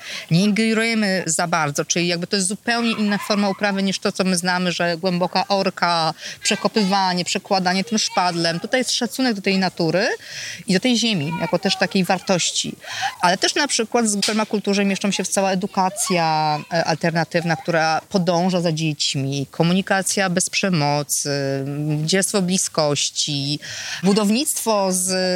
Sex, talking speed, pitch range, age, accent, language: female, 145 wpm, 170-220 Hz, 30-49, native, Polish